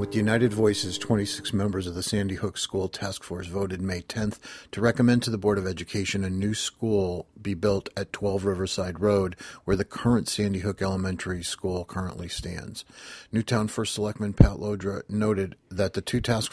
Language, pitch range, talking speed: English, 95-105 Hz, 180 wpm